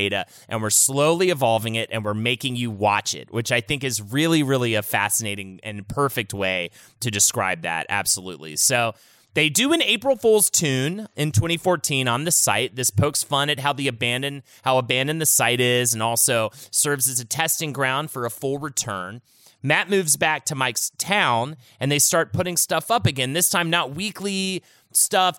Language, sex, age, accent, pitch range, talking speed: English, male, 30-49, American, 115-160 Hz, 190 wpm